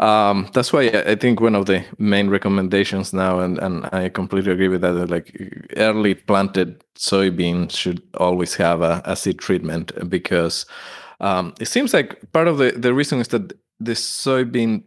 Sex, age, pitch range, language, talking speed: male, 20-39, 95-115 Hz, English, 175 wpm